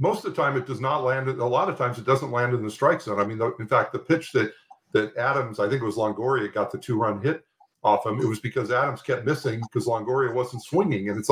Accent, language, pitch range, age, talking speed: American, English, 115-145 Hz, 50-69, 270 wpm